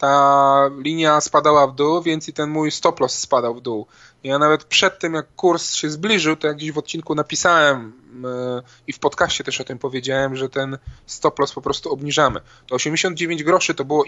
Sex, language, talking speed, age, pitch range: male, Polish, 205 wpm, 20-39, 130-155 Hz